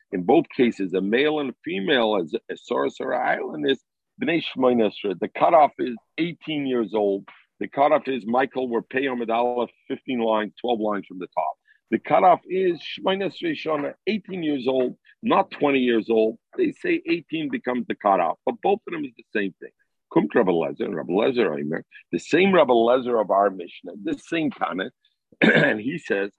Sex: male